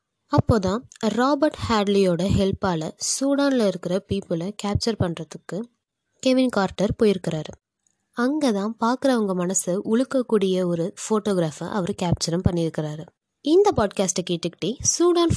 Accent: native